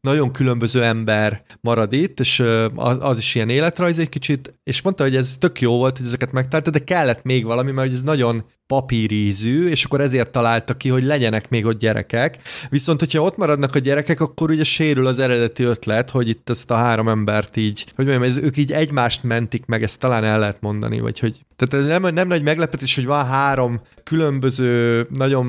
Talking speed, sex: 200 wpm, male